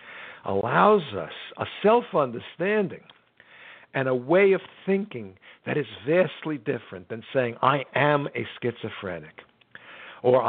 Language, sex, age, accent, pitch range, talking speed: English, male, 60-79, American, 120-170 Hz, 115 wpm